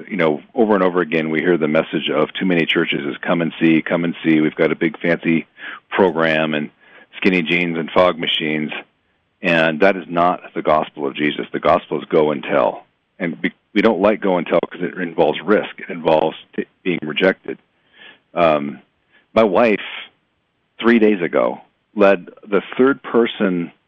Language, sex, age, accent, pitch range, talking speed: English, male, 40-59, American, 80-95 Hz, 180 wpm